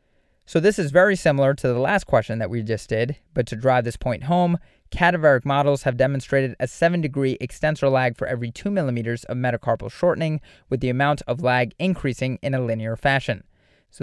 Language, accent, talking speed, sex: English, American, 195 wpm, male